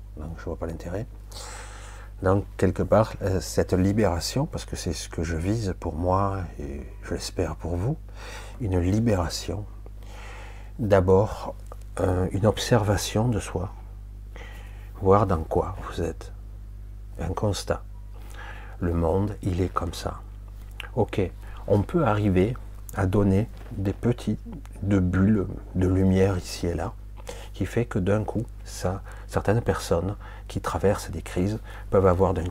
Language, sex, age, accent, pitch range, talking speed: French, male, 50-69, French, 95-100 Hz, 140 wpm